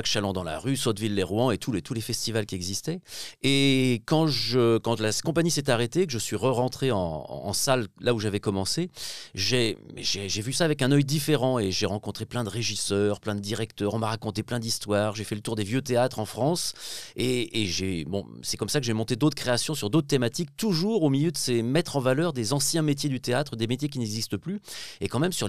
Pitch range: 110-140 Hz